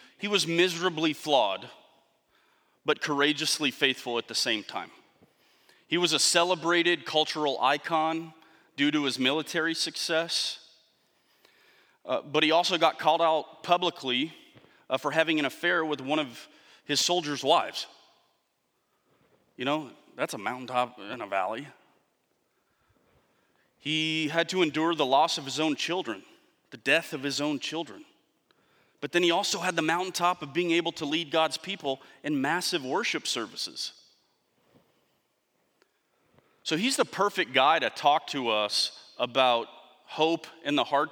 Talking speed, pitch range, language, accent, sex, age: 140 wpm, 140-165 Hz, English, American, male, 30-49